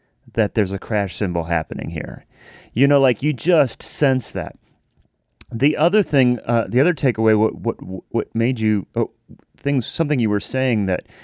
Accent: American